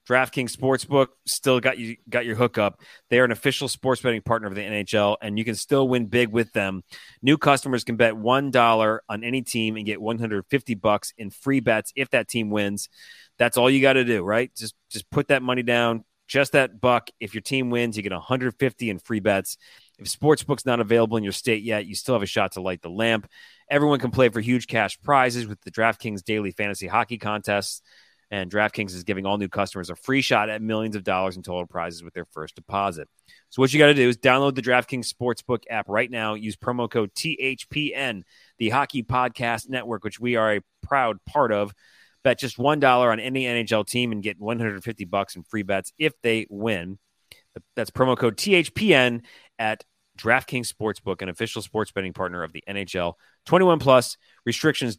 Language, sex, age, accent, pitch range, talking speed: English, male, 30-49, American, 105-125 Hz, 205 wpm